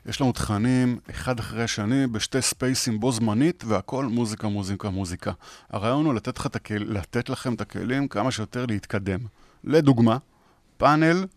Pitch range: 110-140 Hz